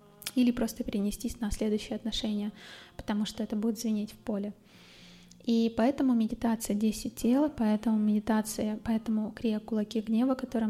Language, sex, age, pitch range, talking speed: Russian, female, 20-39, 215-235 Hz, 140 wpm